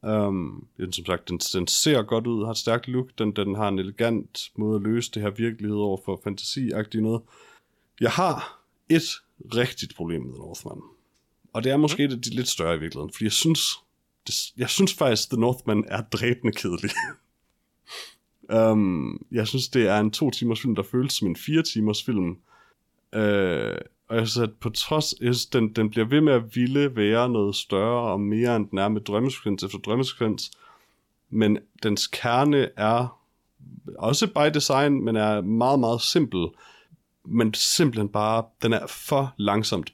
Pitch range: 100-125 Hz